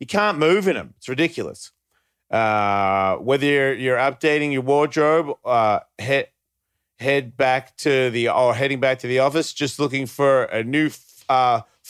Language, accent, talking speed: English, Australian, 165 wpm